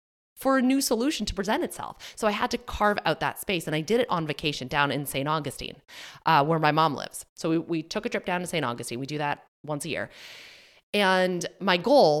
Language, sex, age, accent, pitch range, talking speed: English, female, 20-39, American, 140-185 Hz, 240 wpm